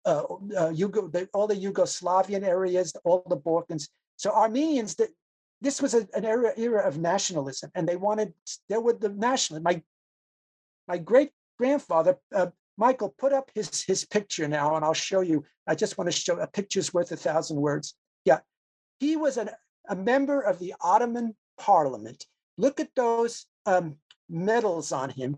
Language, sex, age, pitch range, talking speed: English, male, 50-69, 160-240 Hz, 175 wpm